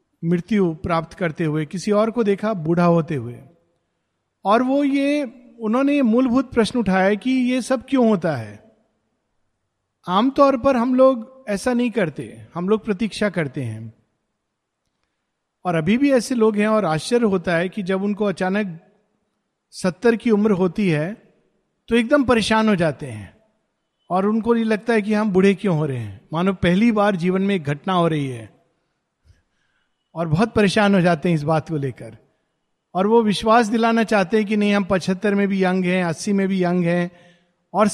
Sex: male